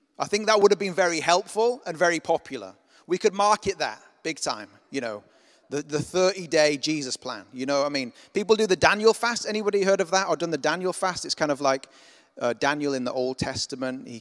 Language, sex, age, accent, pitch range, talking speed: English, male, 30-49, British, 120-175 Hz, 230 wpm